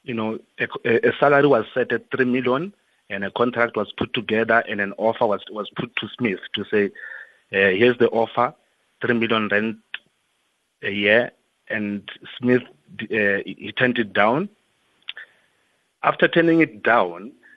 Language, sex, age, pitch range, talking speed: English, male, 30-49, 110-130 Hz, 155 wpm